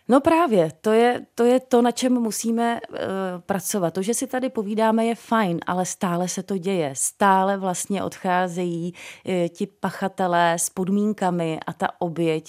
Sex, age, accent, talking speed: female, 30-49, native, 165 wpm